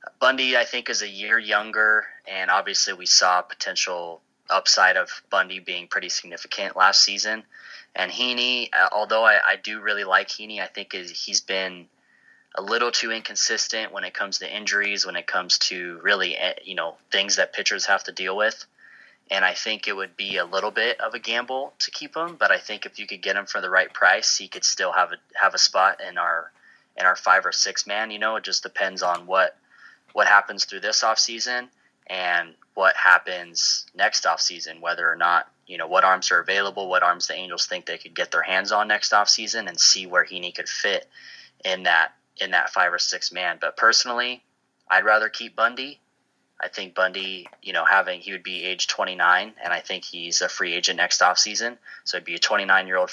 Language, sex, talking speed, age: English, male, 205 wpm, 20-39